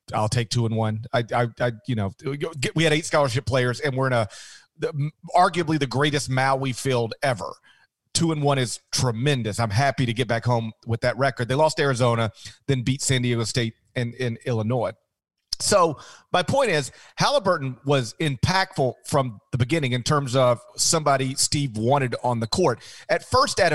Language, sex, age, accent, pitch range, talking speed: English, male, 40-59, American, 120-150 Hz, 185 wpm